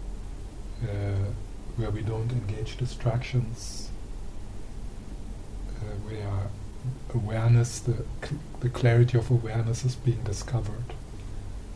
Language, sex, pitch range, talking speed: English, male, 100-125 Hz, 85 wpm